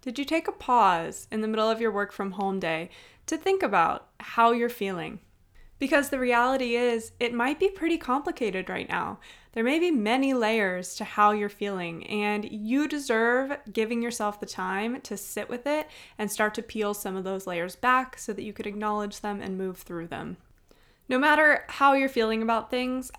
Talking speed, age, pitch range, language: 200 wpm, 20-39, 200-250 Hz, English